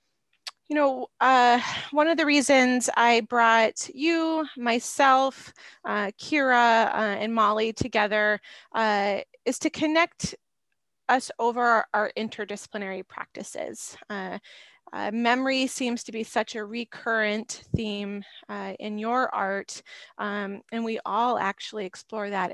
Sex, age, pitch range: female, 20-39, 200-240 Hz